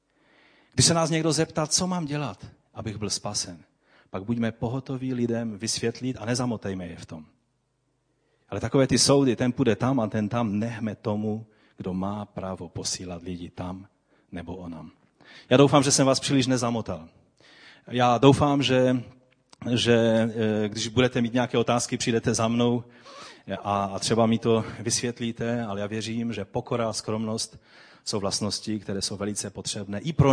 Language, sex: Czech, male